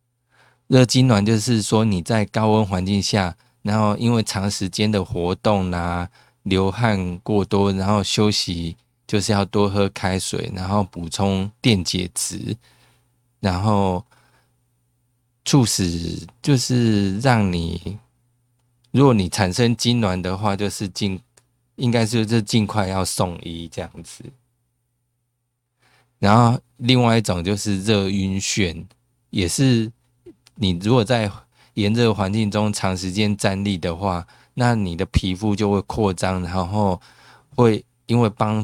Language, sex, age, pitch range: Chinese, male, 20-39, 95-120 Hz